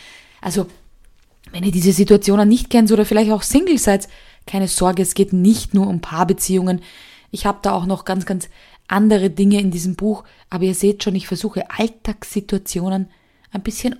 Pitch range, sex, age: 185-235 Hz, female, 20-39